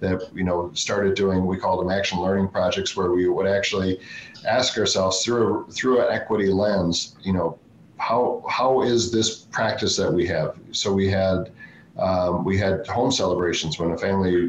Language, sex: English, male